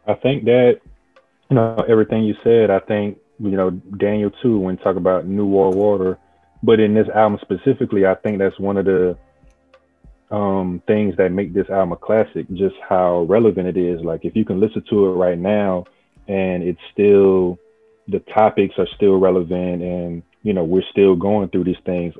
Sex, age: male, 20-39